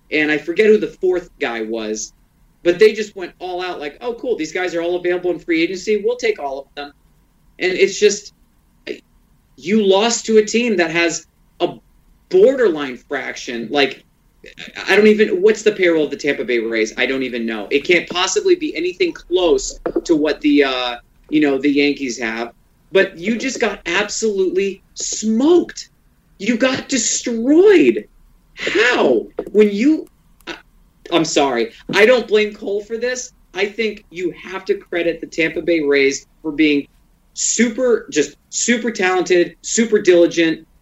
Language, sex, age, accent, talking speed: English, male, 30-49, American, 165 wpm